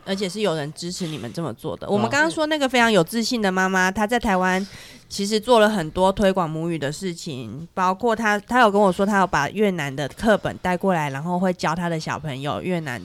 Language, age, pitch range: Chinese, 20-39, 170-215 Hz